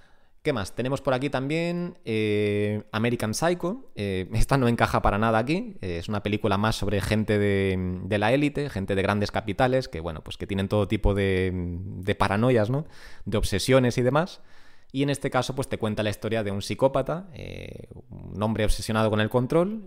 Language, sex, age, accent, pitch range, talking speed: Spanish, male, 20-39, Spanish, 100-130 Hz, 195 wpm